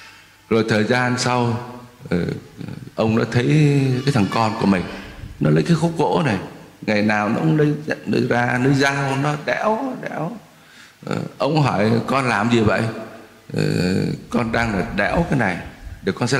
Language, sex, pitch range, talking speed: Vietnamese, male, 115-155 Hz, 170 wpm